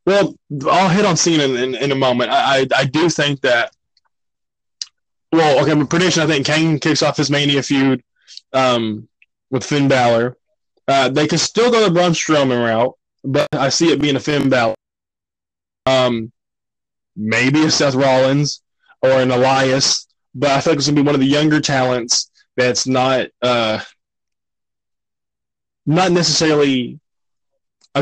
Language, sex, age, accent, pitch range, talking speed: English, male, 20-39, American, 120-145 Hz, 165 wpm